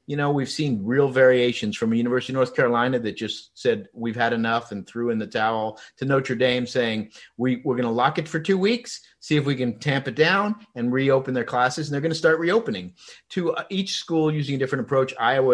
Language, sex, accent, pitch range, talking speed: English, male, American, 110-140 Hz, 235 wpm